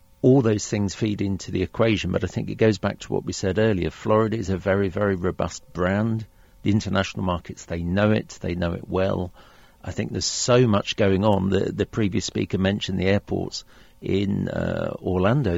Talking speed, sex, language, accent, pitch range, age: 200 wpm, male, English, British, 95-110 Hz, 50-69